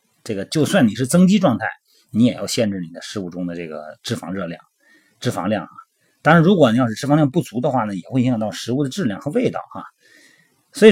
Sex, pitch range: male, 110-160 Hz